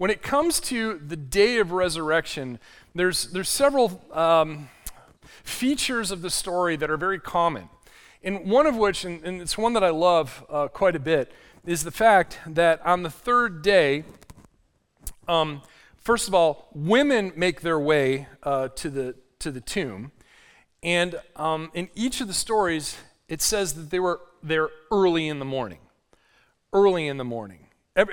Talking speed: 170 wpm